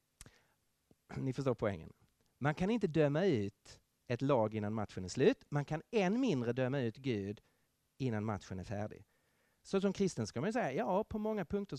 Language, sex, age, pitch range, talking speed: Danish, male, 40-59, 115-175 Hz, 180 wpm